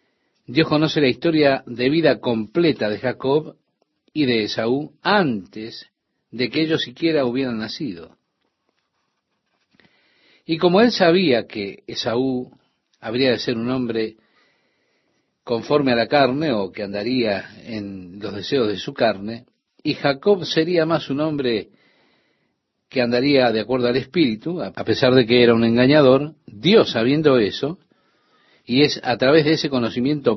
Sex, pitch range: male, 115-155 Hz